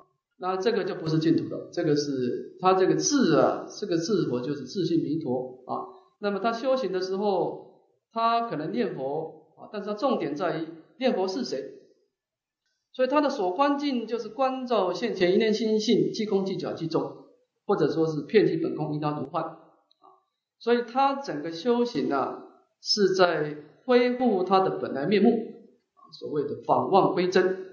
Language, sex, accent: English, male, Chinese